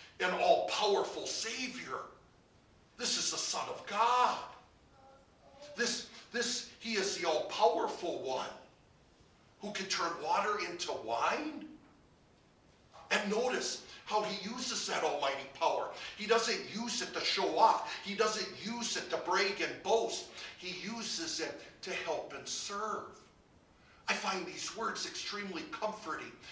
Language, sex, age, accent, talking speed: English, male, 50-69, American, 130 wpm